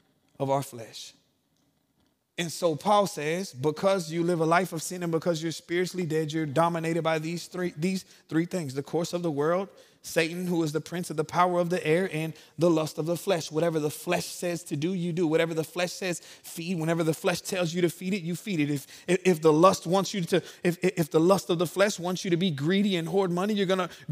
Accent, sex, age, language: American, male, 20-39, English